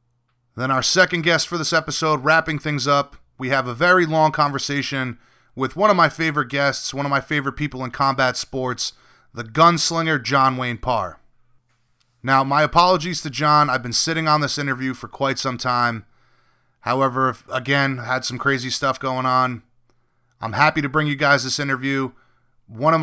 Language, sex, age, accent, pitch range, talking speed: English, male, 30-49, American, 125-150 Hz, 175 wpm